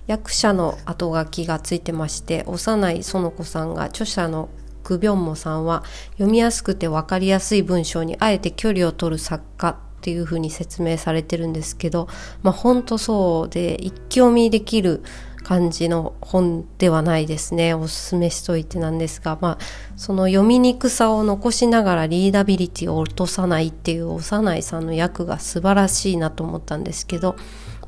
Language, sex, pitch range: Japanese, female, 170-205 Hz